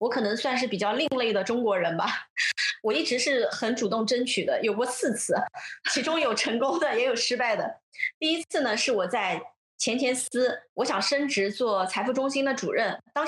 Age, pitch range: 20-39, 215-280 Hz